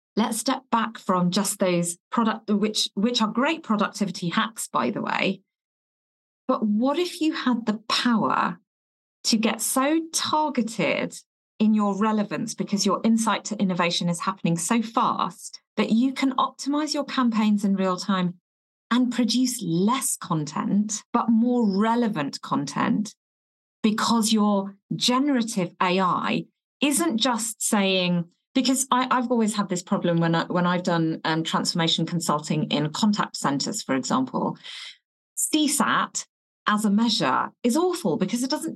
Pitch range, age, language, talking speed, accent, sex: 190-250 Hz, 40-59, English, 140 wpm, British, female